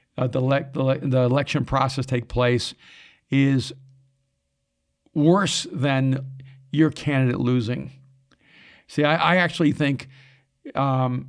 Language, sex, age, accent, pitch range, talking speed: English, male, 50-69, American, 125-140 Hz, 115 wpm